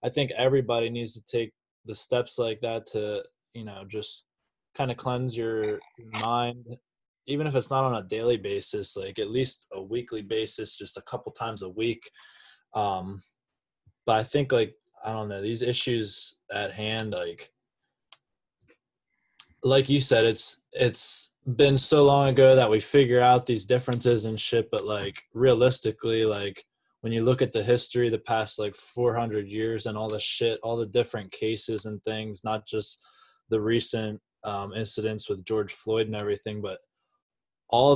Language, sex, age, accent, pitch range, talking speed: English, male, 20-39, American, 105-125 Hz, 170 wpm